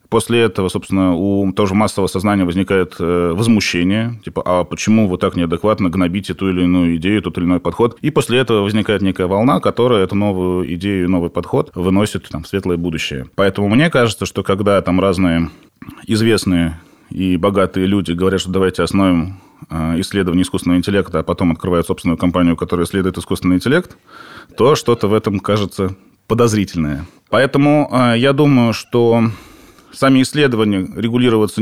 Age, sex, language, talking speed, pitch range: 20-39, male, Russian, 155 wpm, 85-105 Hz